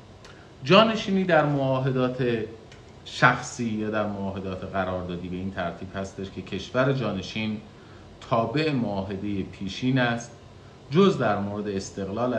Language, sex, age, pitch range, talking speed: Persian, male, 40-59, 95-115 Hz, 110 wpm